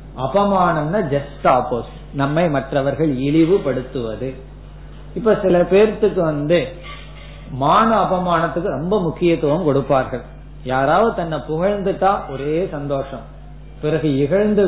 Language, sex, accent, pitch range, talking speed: Tamil, male, native, 135-170 Hz, 85 wpm